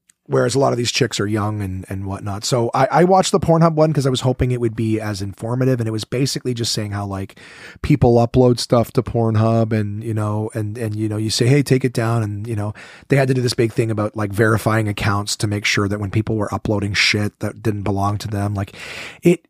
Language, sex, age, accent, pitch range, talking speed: English, male, 30-49, American, 105-125 Hz, 255 wpm